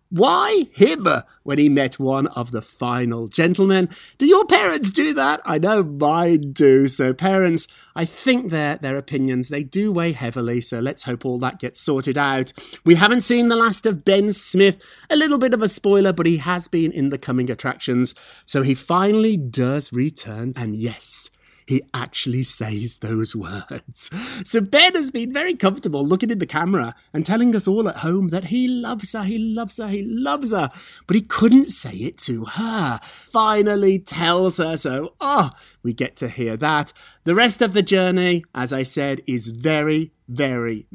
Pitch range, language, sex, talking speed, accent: 130-205 Hz, English, male, 185 wpm, British